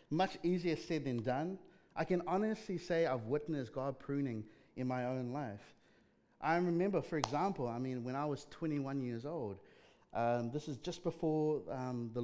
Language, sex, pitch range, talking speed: English, male, 115-150 Hz, 175 wpm